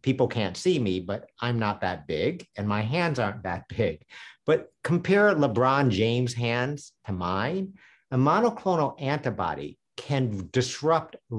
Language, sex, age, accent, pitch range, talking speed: English, male, 50-69, American, 110-130 Hz, 140 wpm